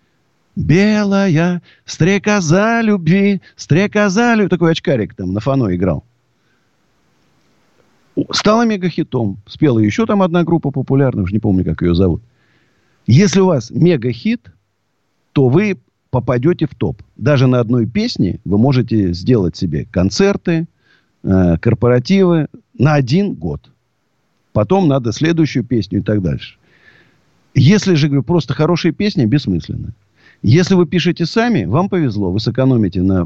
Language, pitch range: Russian, 105-170 Hz